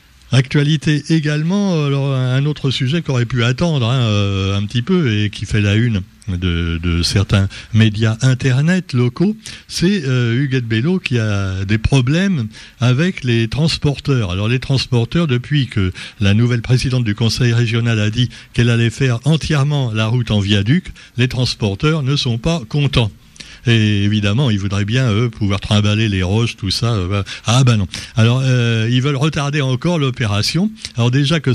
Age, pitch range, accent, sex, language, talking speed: 60-79, 105-135 Hz, French, male, French, 165 wpm